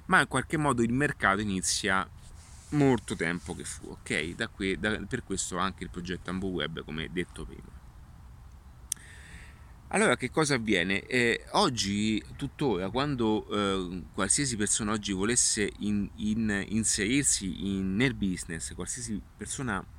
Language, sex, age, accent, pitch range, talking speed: Italian, male, 30-49, native, 95-125 Hz, 135 wpm